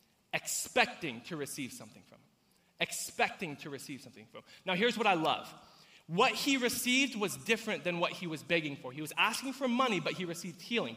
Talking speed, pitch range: 200 wpm, 135-210 Hz